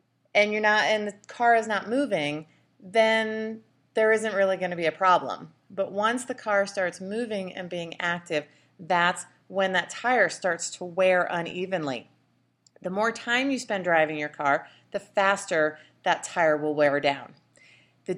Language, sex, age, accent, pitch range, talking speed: English, female, 30-49, American, 165-210 Hz, 165 wpm